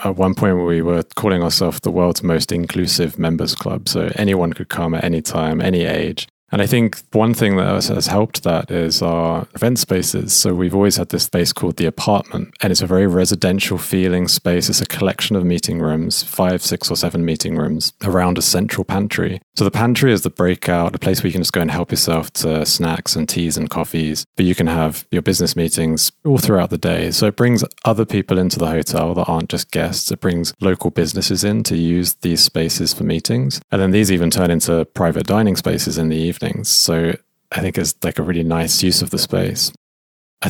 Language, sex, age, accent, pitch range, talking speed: English, male, 30-49, British, 85-95 Hz, 220 wpm